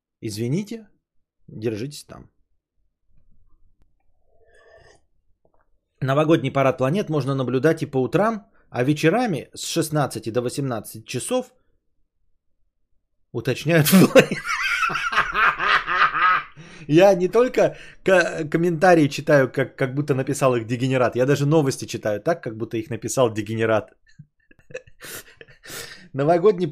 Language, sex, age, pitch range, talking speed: Bulgarian, male, 20-39, 125-180 Hz, 90 wpm